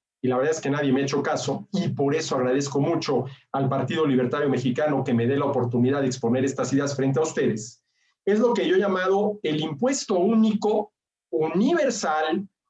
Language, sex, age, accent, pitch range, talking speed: Spanish, male, 50-69, Mexican, 145-220 Hz, 195 wpm